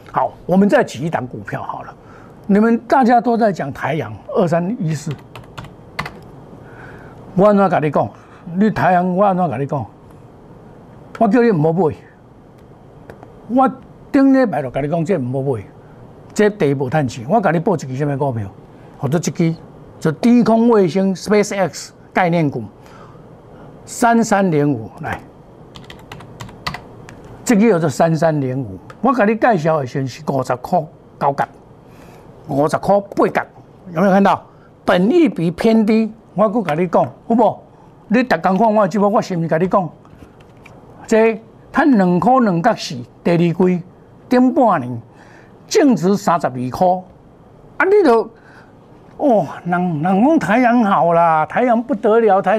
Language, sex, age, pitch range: Chinese, male, 60-79, 145-225 Hz